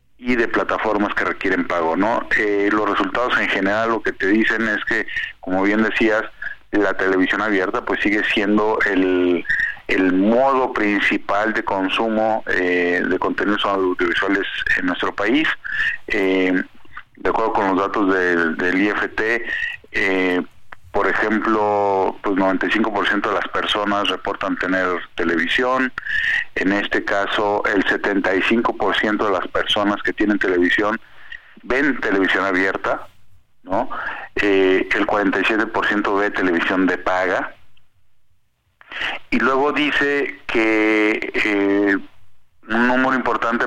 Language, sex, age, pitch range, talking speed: Spanish, male, 40-59, 95-115 Hz, 125 wpm